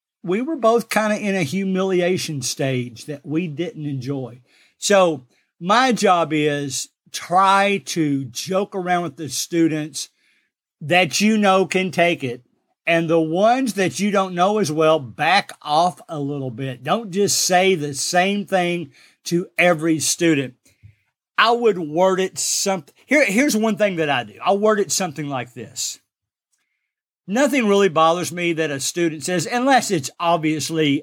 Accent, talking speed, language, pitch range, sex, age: American, 155 wpm, English, 150-195 Hz, male, 50-69